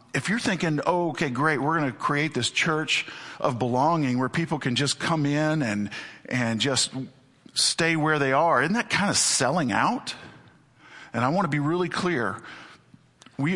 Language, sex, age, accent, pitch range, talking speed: English, male, 50-69, American, 120-155 Hz, 180 wpm